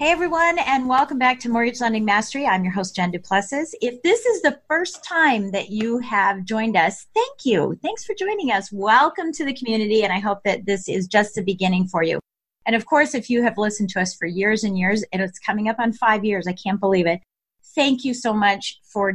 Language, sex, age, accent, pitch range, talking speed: English, female, 40-59, American, 195-255 Hz, 235 wpm